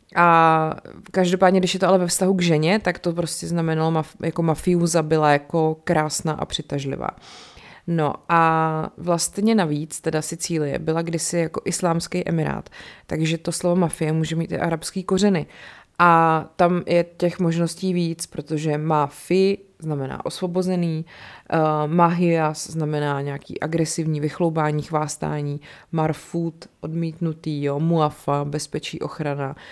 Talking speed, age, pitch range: 130 wpm, 30-49, 155-175 Hz